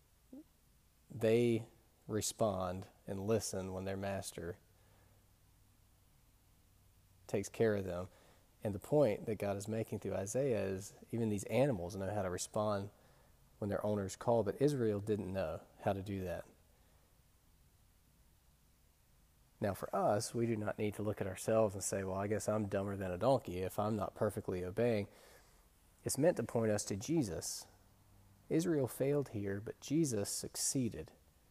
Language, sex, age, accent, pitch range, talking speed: English, male, 30-49, American, 95-115 Hz, 150 wpm